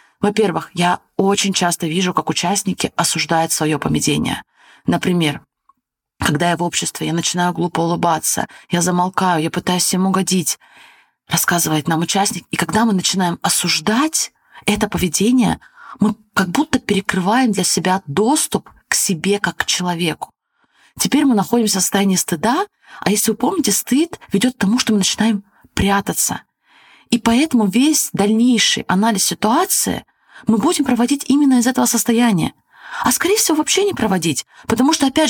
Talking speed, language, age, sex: 150 wpm, Russian, 20-39, female